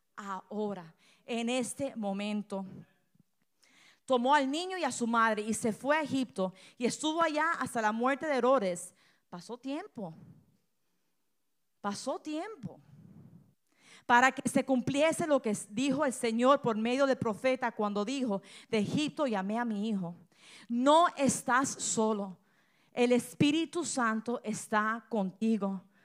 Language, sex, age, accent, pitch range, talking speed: Spanish, female, 40-59, American, 215-285 Hz, 130 wpm